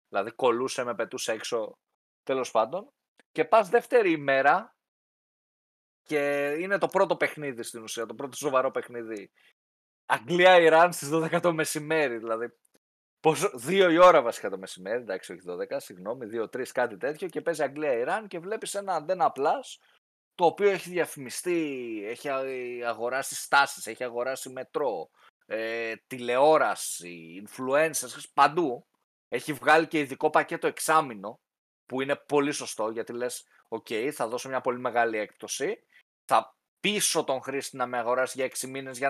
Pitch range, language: 130-180 Hz, Greek